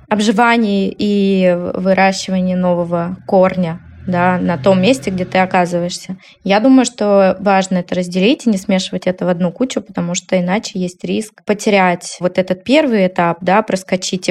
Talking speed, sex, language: 155 wpm, female, Russian